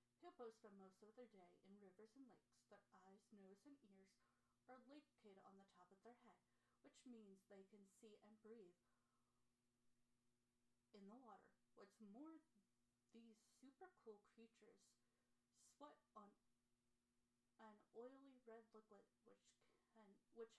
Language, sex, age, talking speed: English, female, 30-49, 145 wpm